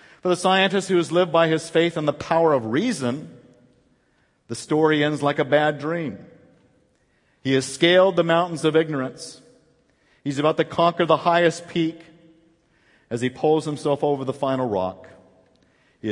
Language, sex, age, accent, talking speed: English, male, 50-69, American, 165 wpm